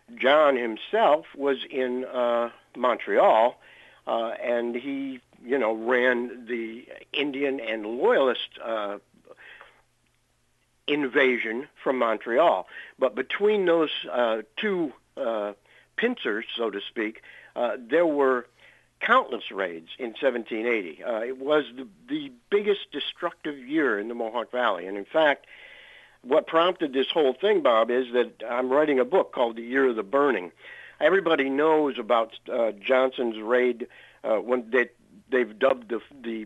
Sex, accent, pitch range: male, American, 120-150 Hz